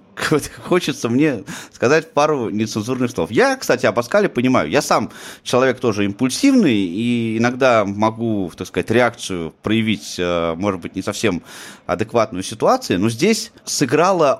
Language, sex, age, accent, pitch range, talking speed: Russian, male, 30-49, native, 100-135 Hz, 135 wpm